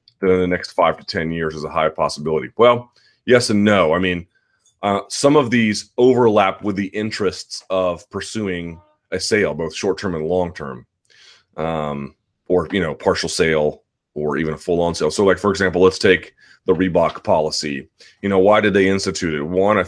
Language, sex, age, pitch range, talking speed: English, male, 30-49, 80-95 Hz, 185 wpm